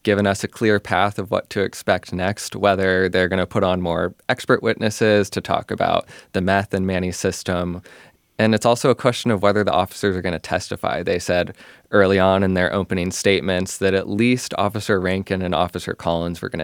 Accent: American